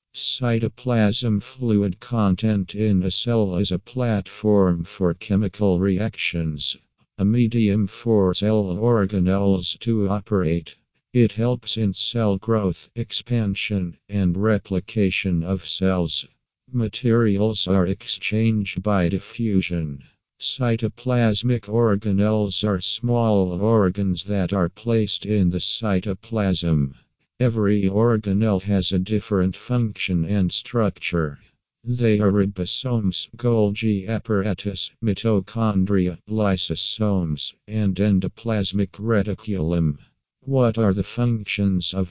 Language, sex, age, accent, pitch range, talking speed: English, male, 50-69, American, 95-110 Hz, 95 wpm